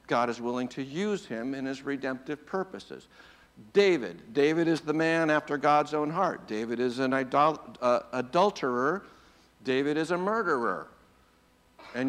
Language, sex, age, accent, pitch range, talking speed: English, male, 60-79, American, 130-155 Hz, 140 wpm